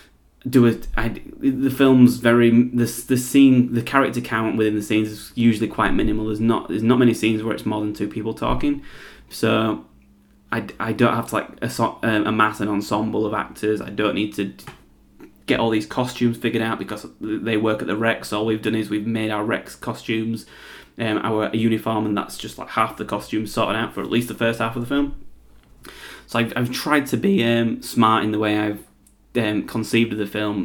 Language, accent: English, British